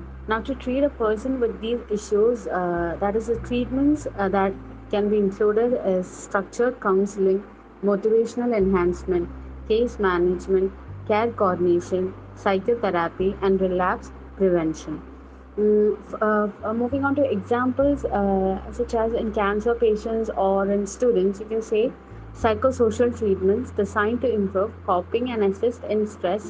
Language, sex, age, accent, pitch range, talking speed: Malayalam, female, 30-49, native, 190-225 Hz, 135 wpm